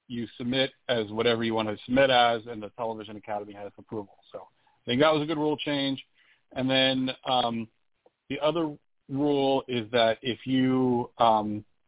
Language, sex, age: English, male, 40-59